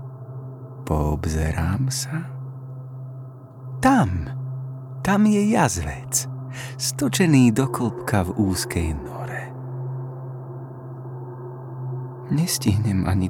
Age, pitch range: 30-49, 120-130 Hz